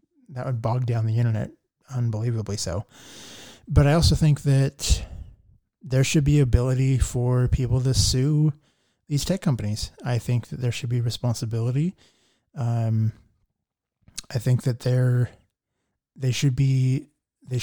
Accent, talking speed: American, 135 wpm